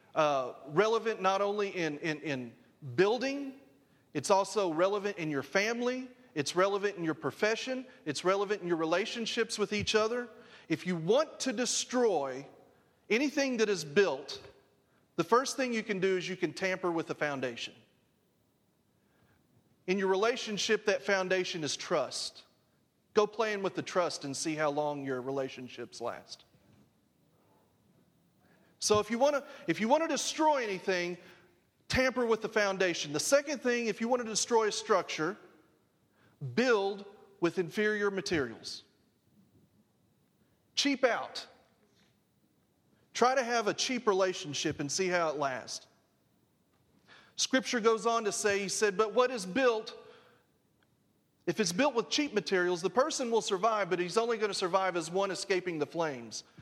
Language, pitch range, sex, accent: English, 165-230 Hz, male, American